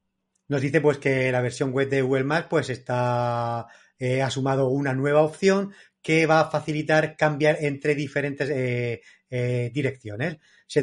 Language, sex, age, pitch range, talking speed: Spanish, male, 30-49, 130-155 Hz, 155 wpm